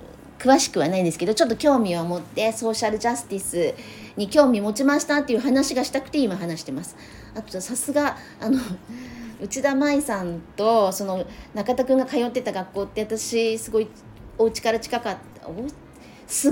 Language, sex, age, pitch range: Japanese, female, 40-59, 190-255 Hz